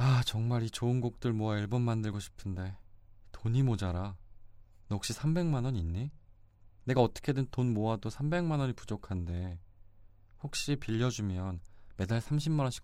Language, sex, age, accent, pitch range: Korean, male, 20-39, native, 95-125 Hz